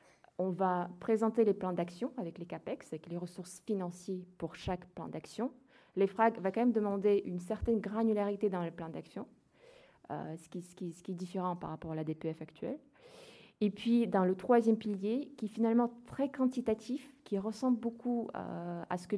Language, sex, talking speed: French, female, 195 wpm